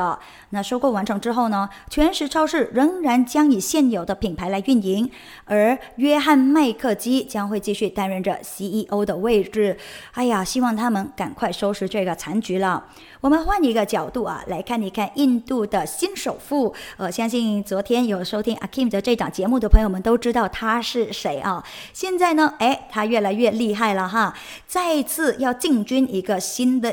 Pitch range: 205-265 Hz